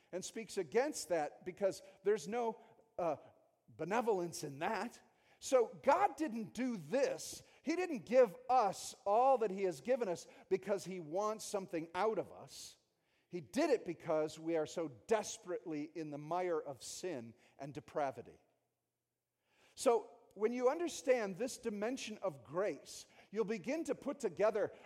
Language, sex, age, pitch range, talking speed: English, male, 50-69, 180-250 Hz, 145 wpm